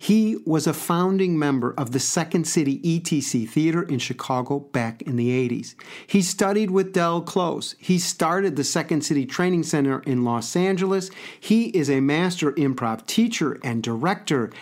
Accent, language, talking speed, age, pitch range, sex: American, English, 165 wpm, 50-69, 135-175 Hz, male